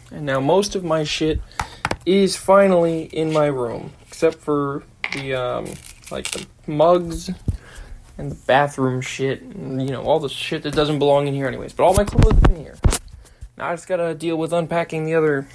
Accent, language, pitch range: American, English, 130-175 Hz